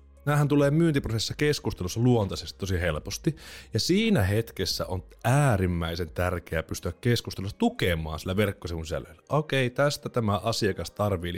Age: 30-49